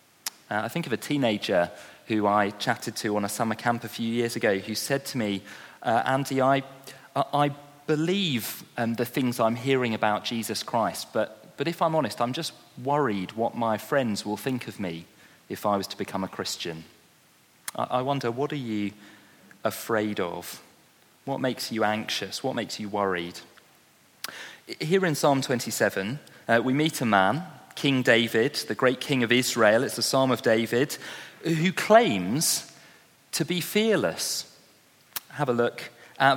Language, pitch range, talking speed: English, 110-155 Hz, 170 wpm